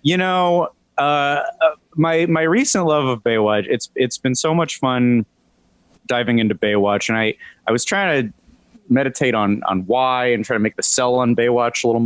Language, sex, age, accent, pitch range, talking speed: English, male, 30-49, American, 115-150 Hz, 190 wpm